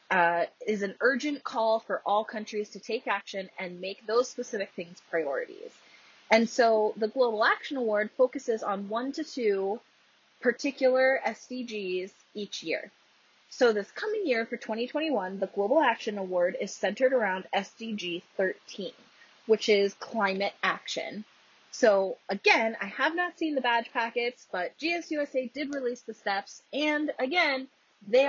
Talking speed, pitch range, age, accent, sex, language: 145 wpm, 200-285 Hz, 20-39, American, female, English